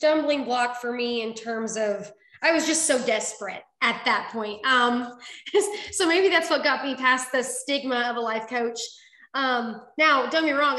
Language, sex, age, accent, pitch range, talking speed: English, female, 20-39, American, 235-280 Hz, 195 wpm